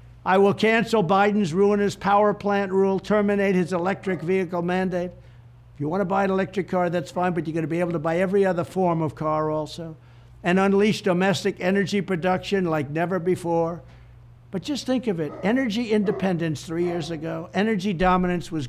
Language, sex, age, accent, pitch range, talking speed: English, male, 60-79, American, 155-195 Hz, 185 wpm